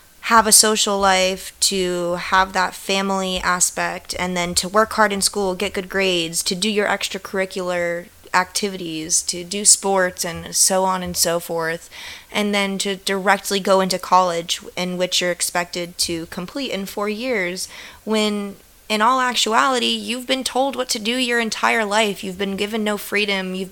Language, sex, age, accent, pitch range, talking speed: English, female, 20-39, American, 185-220 Hz, 170 wpm